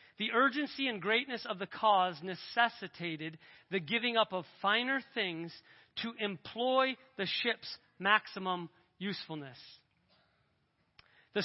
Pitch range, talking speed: 195-285 Hz, 110 wpm